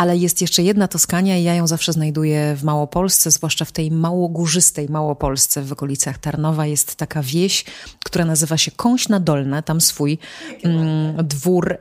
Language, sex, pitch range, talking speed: Polish, female, 145-190 Hz, 160 wpm